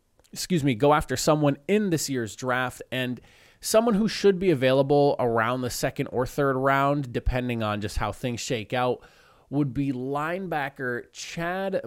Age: 20-39